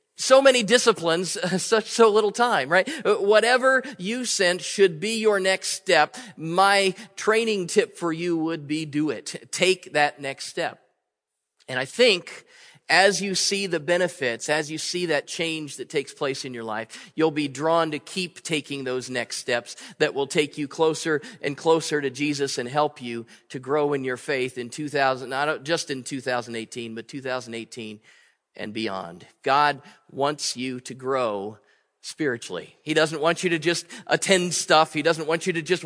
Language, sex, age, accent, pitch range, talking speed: English, male, 40-59, American, 135-180 Hz, 175 wpm